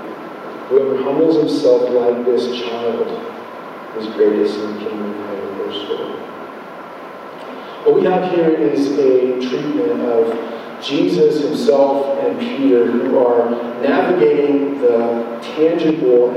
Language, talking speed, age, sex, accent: English, 115 wpm, 40-59, male, American